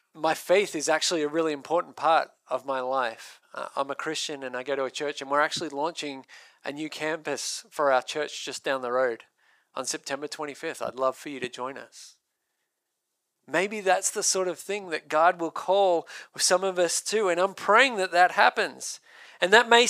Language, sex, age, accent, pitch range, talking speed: English, male, 40-59, Australian, 170-225 Hz, 205 wpm